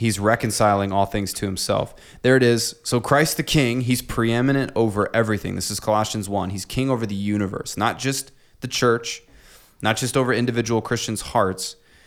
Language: English